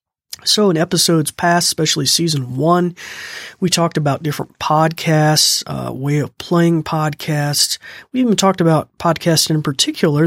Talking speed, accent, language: 140 wpm, American, English